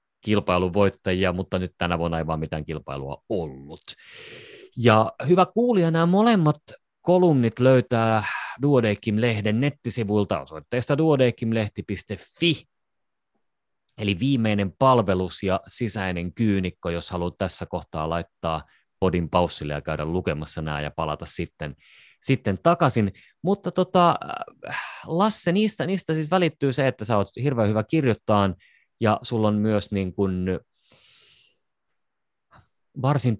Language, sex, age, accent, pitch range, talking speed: Finnish, male, 30-49, native, 85-135 Hz, 115 wpm